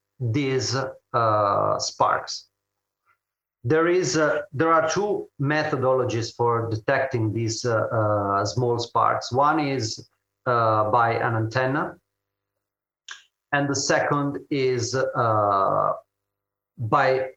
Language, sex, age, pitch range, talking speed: English, male, 40-59, 110-130 Hz, 100 wpm